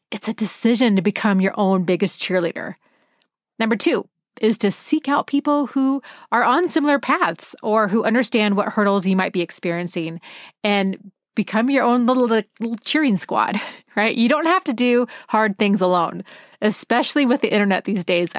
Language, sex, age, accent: English, female, 30-49, American